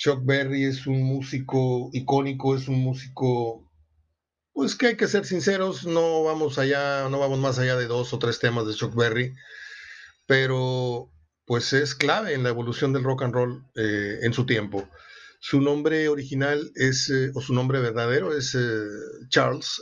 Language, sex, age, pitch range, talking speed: Spanish, male, 50-69, 120-145 Hz, 175 wpm